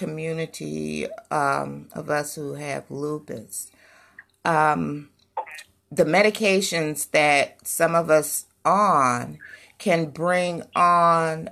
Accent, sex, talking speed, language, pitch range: American, female, 95 wpm, English, 125-160 Hz